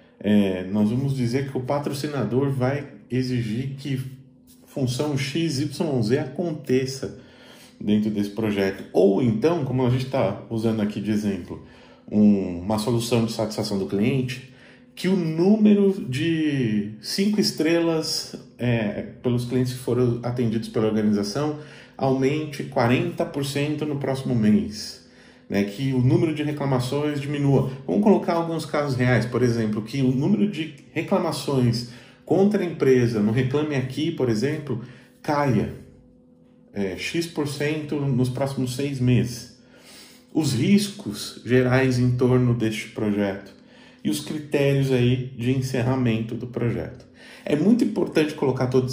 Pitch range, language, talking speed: 115-150 Hz, Portuguese, 130 wpm